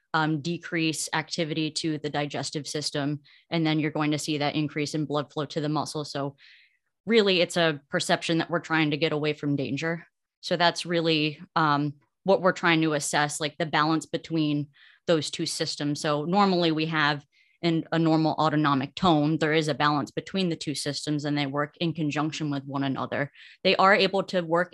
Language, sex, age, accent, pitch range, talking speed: English, female, 20-39, American, 150-170 Hz, 195 wpm